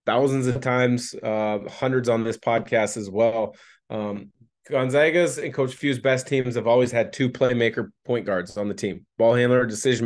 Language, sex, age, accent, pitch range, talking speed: English, male, 30-49, American, 115-135 Hz, 180 wpm